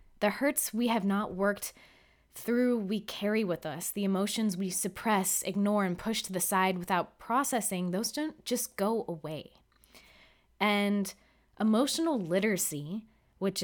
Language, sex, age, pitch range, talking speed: English, female, 20-39, 170-220 Hz, 140 wpm